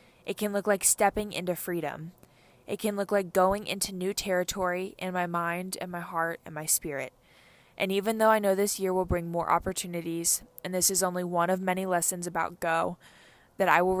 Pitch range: 175-215 Hz